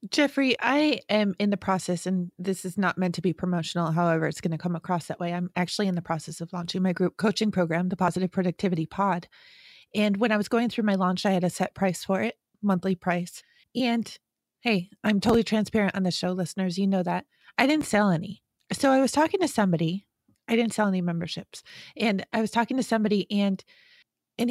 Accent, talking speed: American, 220 wpm